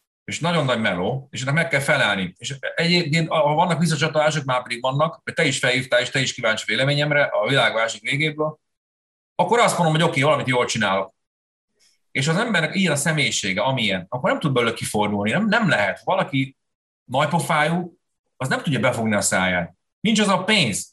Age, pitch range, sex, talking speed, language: 30-49, 110-150 Hz, male, 190 wpm, Hungarian